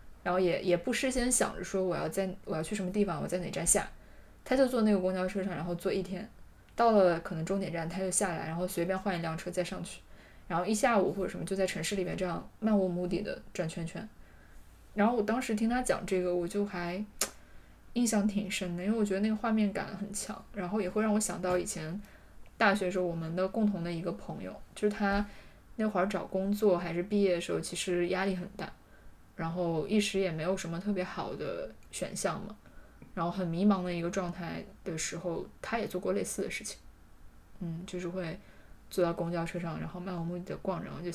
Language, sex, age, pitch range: Chinese, female, 20-39, 175-205 Hz